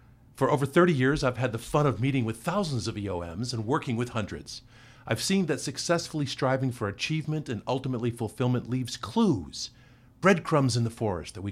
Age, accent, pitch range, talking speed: 50-69, American, 110-140 Hz, 190 wpm